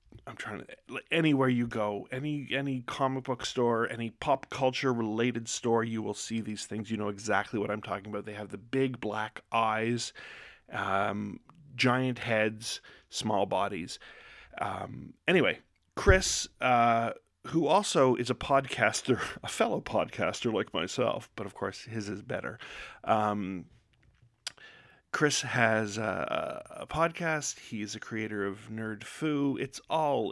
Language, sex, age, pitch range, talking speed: English, male, 40-59, 110-135 Hz, 145 wpm